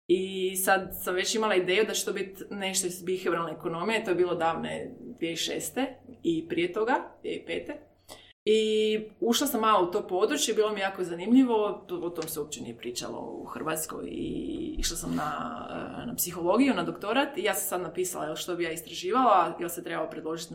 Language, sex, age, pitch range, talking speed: Croatian, female, 20-39, 170-225 Hz, 185 wpm